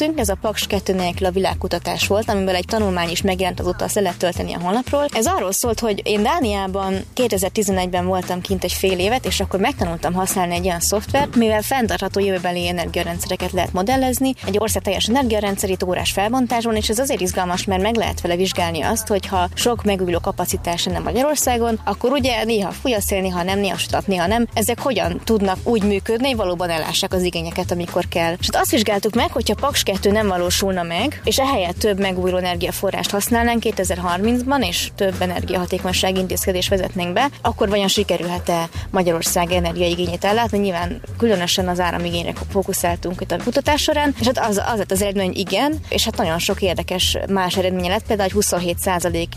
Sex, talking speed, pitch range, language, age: female, 170 wpm, 180-225 Hz, Hungarian, 20-39